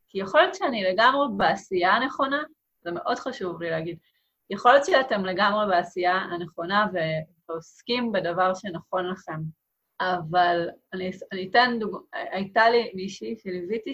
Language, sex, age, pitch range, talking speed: Hebrew, female, 30-49, 180-220 Hz, 130 wpm